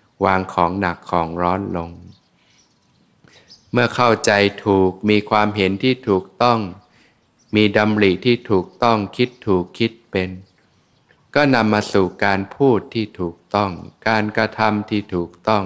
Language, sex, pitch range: Thai, male, 95-110 Hz